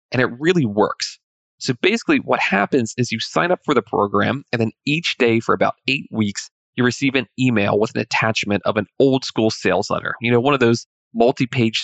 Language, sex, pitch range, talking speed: English, male, 110-135 Hz, 215 wpm